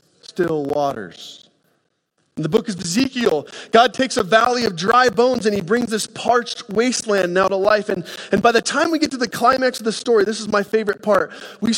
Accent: American